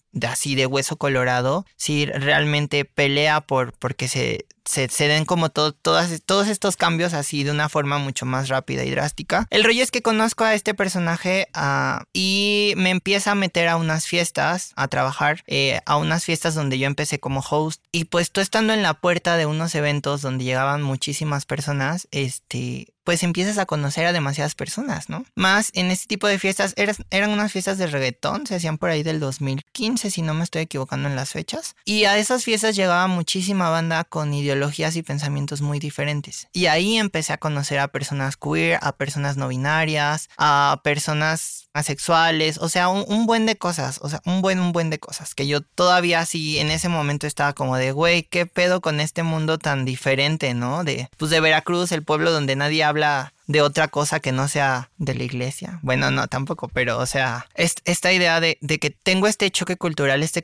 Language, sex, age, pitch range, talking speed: Spanish, male, 20-39, 140-180 Hz, 205 wpm